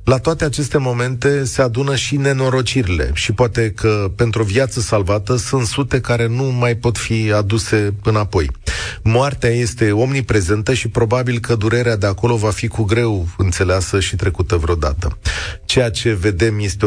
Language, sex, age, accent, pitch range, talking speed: Romanian, male, 40-59, native, 95-125 Hz, 160 wpm